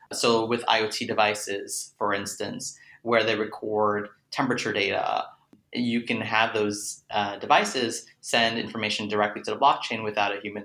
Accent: American